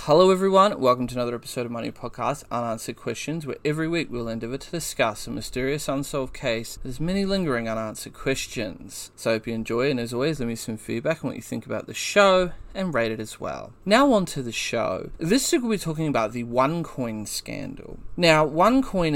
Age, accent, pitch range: 30-49, Australian, 115-150 Hz